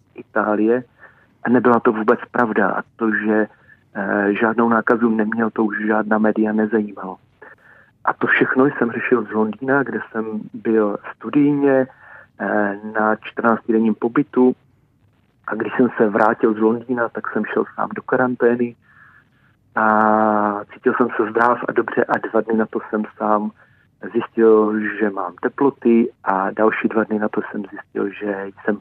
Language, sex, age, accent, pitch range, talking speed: Czech, male, 40-59, native, 110-120 Hz, 155 wpm